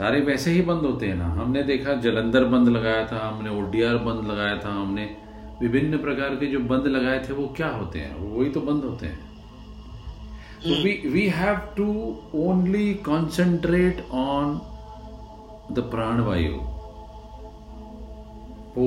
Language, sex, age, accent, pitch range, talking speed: Hindi, male, 40-59, native, 110-145 Hz, 145 wpm